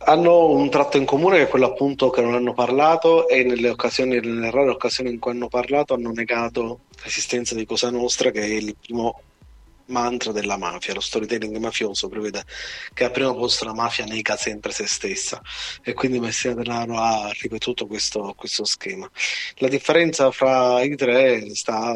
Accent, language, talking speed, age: native, Italian, 180 wpm, 30-49